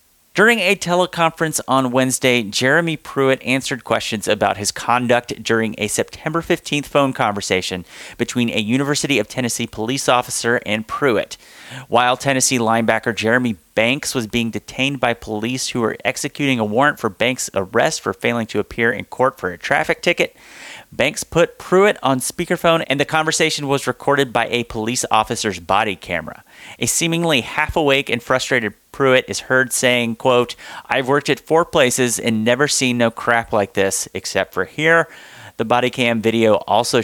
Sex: male